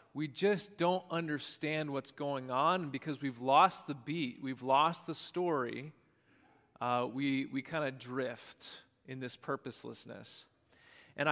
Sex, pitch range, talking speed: male, 135-185 Hz, 140 wpm